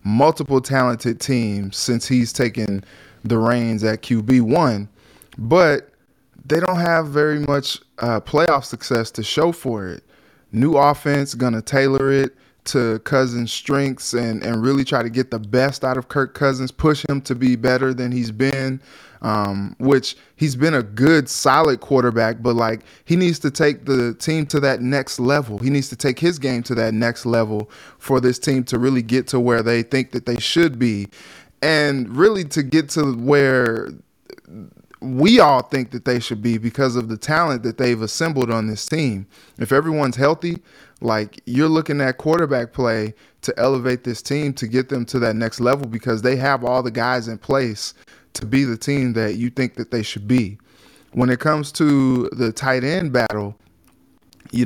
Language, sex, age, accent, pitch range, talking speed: English, male, 20-39, American, 115-140 Hz, 185 wpm